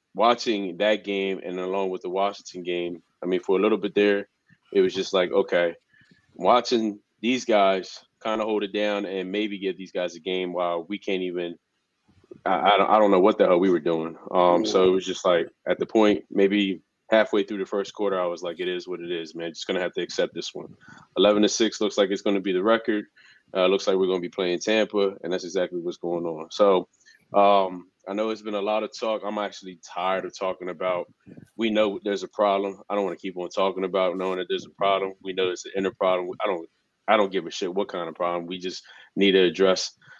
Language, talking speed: English, 245 wpm